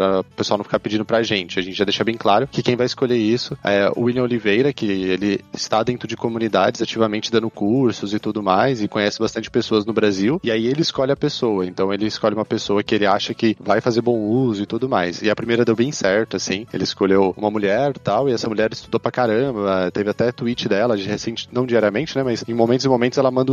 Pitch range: 105-125 Hz